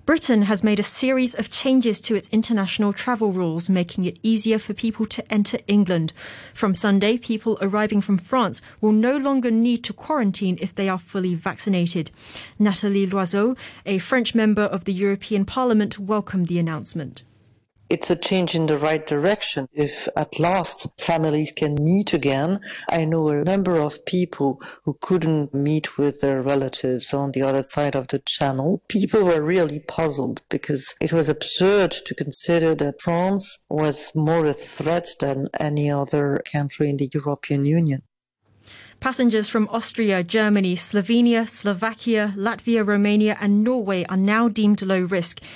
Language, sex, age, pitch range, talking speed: English, female, 30-49, 155-215 Hz, 160 wpm